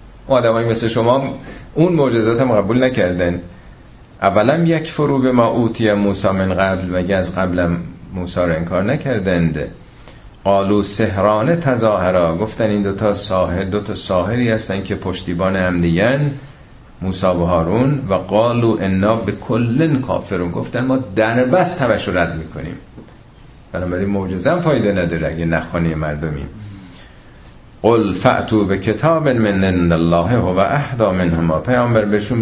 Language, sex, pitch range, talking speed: Persian, male, 95-140 Hz, 135 wpm